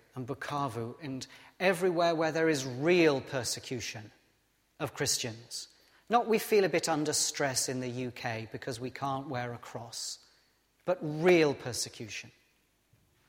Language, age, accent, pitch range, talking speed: English, 40-59, British, 130-190 Hz, 135 wpm